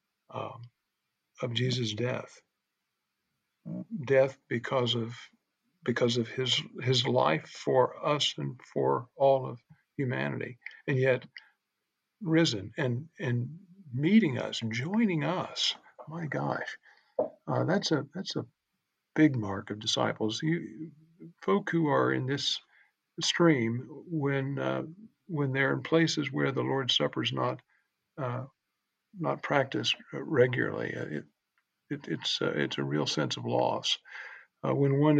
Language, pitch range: English, 120-160 Hz